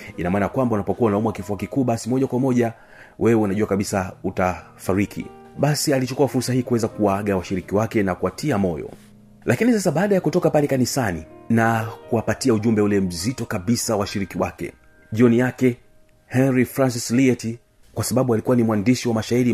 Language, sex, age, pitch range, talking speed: Swahili, male, 40-59, 100-125 Hz, 165 wpm